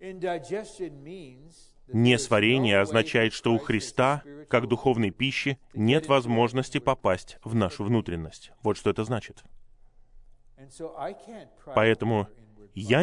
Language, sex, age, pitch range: Russian, male, 20-39, 110-140 Hz